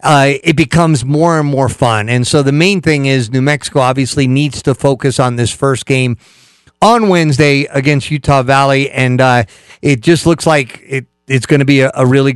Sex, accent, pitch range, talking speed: male, American, 125-150 Hz, 200 wpm